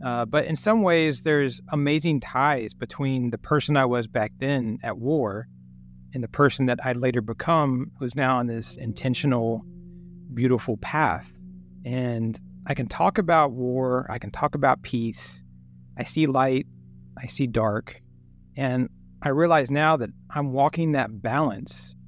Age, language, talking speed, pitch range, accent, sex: 30-49, English, 155 wpm, 105-145 Hz, American, male